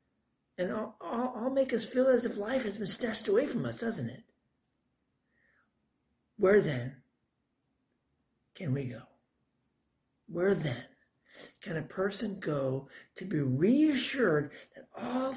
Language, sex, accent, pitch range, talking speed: German, male, American, 135-225 Hz, 135 wpm